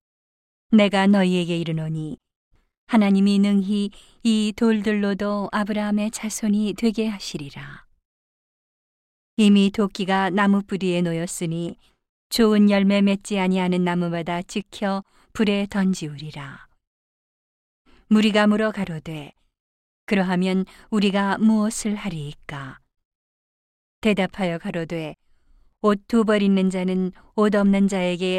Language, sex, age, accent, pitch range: Korean, female, 40-59, native, 170-210 Hz